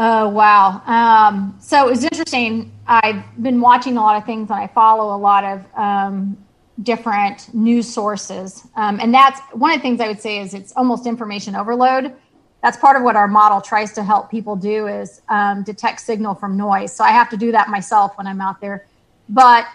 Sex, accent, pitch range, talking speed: female, American, 200-235 Hz, 205 wpm